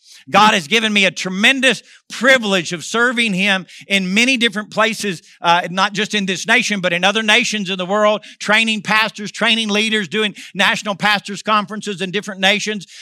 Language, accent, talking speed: English, American, 175 wpm